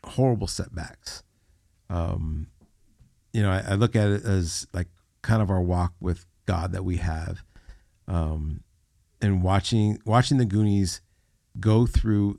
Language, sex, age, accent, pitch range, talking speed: English, male, 50-69, American, 90-110 Hz, 140 wpm